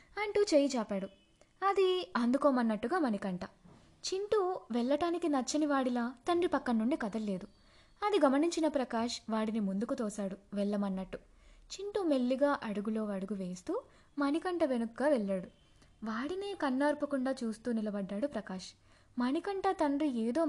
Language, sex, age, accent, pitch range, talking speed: Telugu, female, 20-39, native, 230-320 Hz, 105 wpm